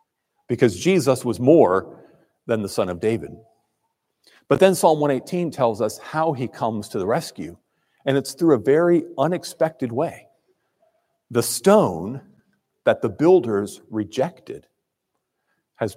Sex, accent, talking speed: male, American, 130 wpm